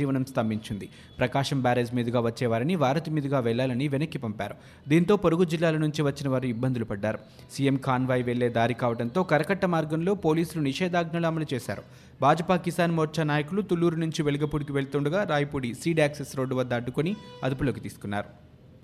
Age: 20-39